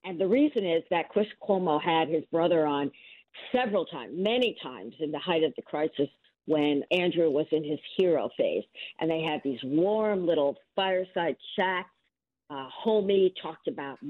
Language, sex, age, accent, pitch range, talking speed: English, female, 50-69, American, 150-190 Hz, 170 wpm